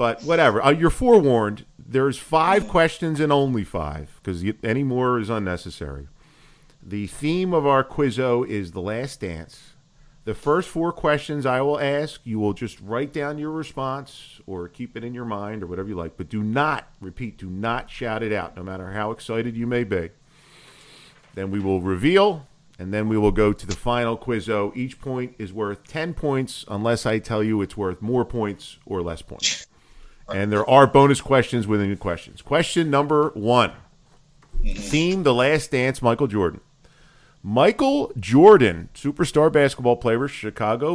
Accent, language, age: American, English, 40-59